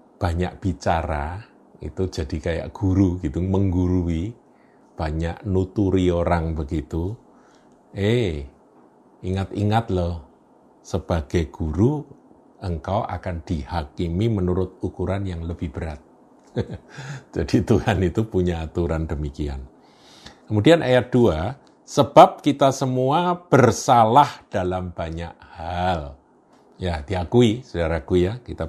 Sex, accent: male, native